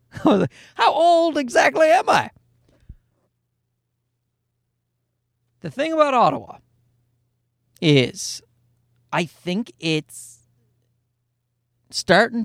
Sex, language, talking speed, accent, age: male, English, 65 wpm, American, 40-59